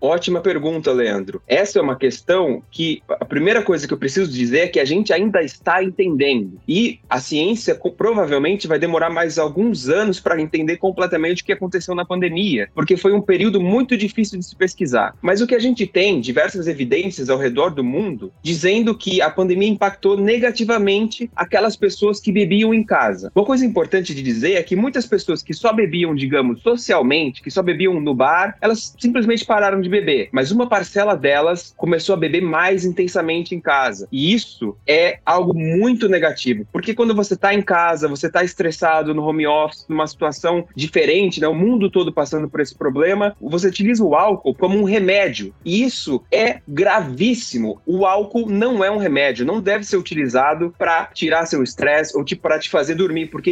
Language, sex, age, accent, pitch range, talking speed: Portuguese, male, 20-39, Brazilian, 160-205 Hz, 185 wpm